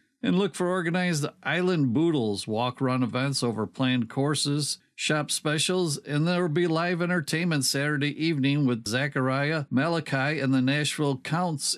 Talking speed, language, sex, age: 145 wpm, English, male, 50-69